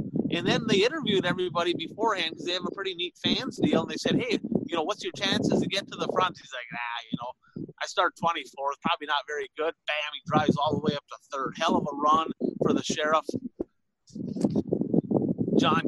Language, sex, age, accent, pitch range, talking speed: English, male, 30-49, American, 165-220 Hz, 215 wpm